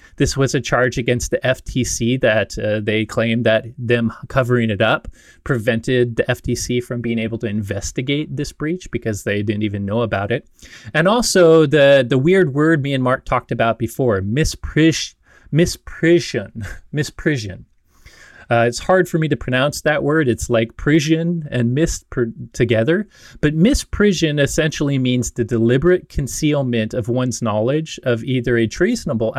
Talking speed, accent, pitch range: 155 wpm, American, 115-145 Hz